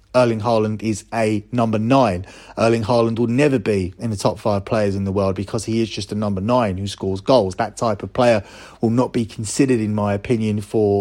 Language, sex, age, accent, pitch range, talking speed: English, male, 30-49, British, 105-120 Hz, 225 wpm